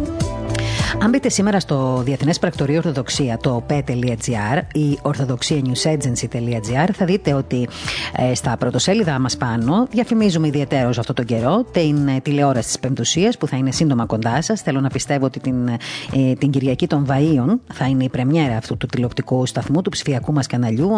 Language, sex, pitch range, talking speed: Greek, female, 130-175 Hz, 165 wpm